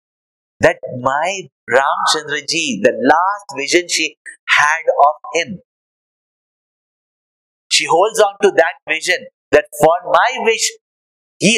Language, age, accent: English, 50-69, Indian